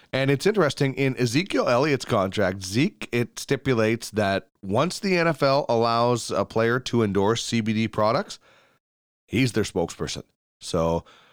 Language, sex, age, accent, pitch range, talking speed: English, male, 30-49, American, 90-135 Hz, 130 wpm